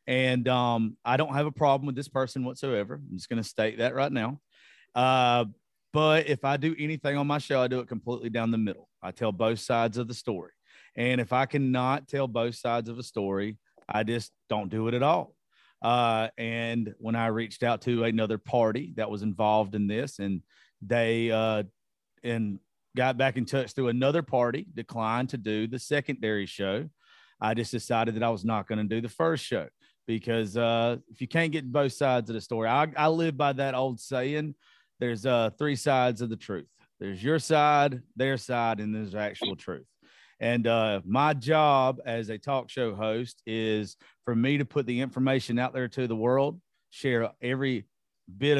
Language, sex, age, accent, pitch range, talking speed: English, male, 40-59, American, 110-130 Hz, 200 wpm